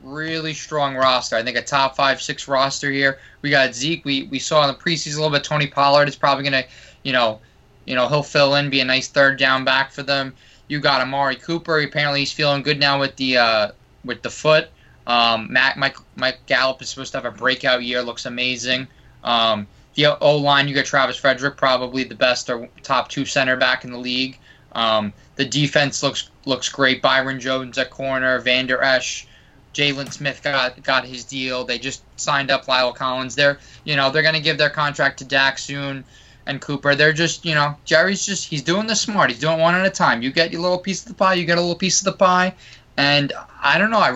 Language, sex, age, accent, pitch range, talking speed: English, male, 20-39, American, 130-155 Hz, 225 wpm